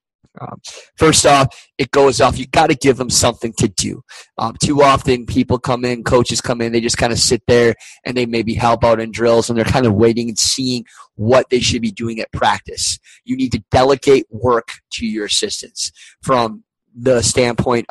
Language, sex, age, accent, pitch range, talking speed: English, male, 20-39, American, 115-130 Hz, 205 wpm